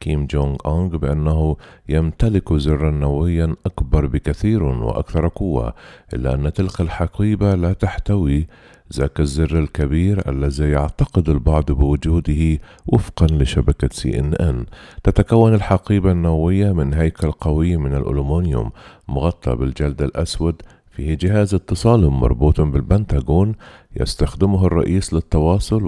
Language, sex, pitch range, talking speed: Arabic, male, 70-95 Hz, 110 wpm